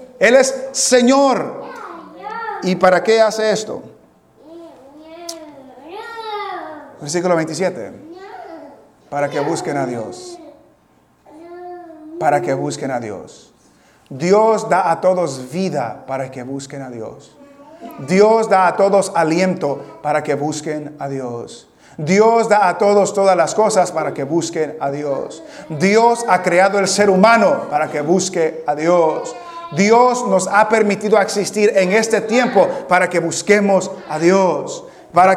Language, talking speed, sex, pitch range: English, 130 wpm, male, 180-250 Hz